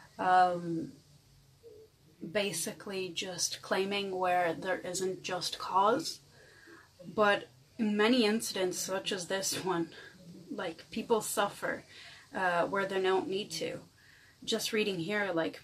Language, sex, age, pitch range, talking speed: English, female, 20-39, 185-215 Hz, 115 wpm